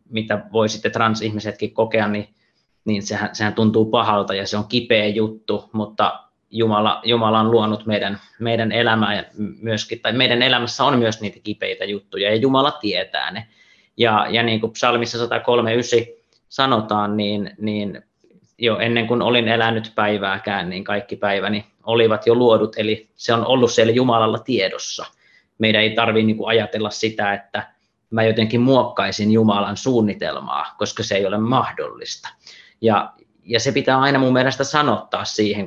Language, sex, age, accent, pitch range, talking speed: Finnish, male, 30-49, native, 105-115 Hz, 150 wpm